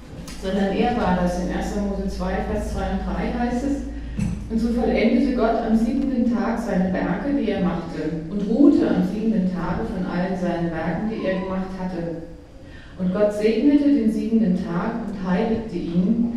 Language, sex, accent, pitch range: German, female, German, 175-225 Hz